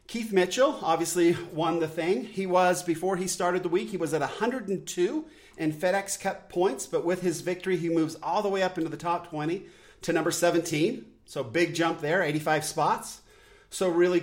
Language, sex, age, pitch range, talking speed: English, male, 40-59, 150-180 Hz, 190 wpm